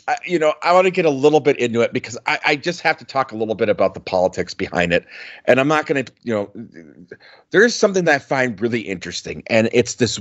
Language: English